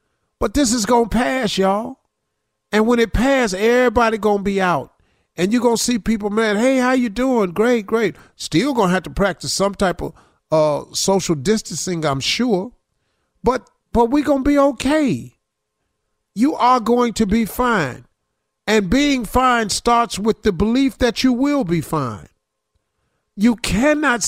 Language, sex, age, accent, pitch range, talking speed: English, male, 50-69, American, 175-240 Hz, 160 wpm